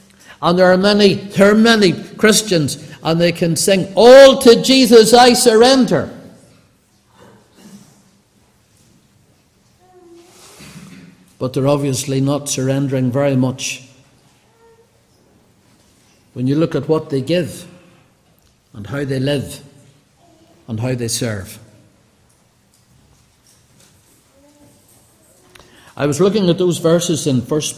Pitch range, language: 155-210 Hz, English